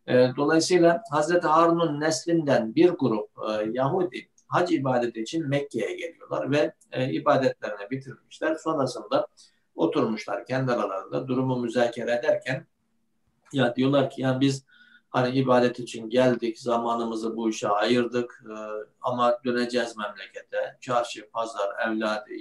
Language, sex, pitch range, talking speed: Turkish, male, 110-155 Hz, 110 wpm